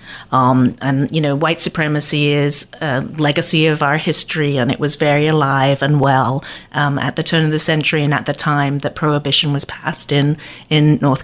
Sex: female